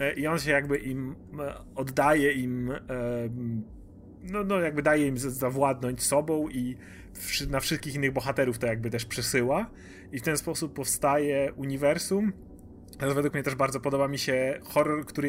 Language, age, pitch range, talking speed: Polish, 30-49, 125-145 Hz, 150 wpm